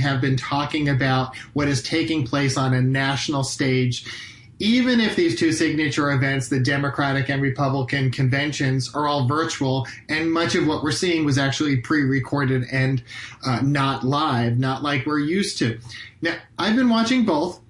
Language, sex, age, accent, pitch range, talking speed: English, male, 40-59, American, 135-165 Hz, 165 wpm